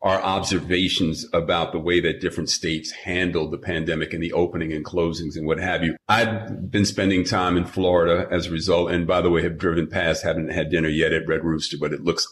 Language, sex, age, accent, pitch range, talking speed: English, male, 40-59, American, 85-105 Hz, 225 wpm